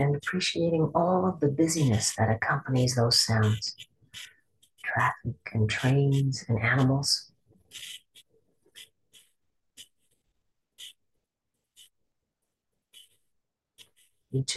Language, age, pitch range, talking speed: English, 50-69, 115-140 Hz, 65 wpm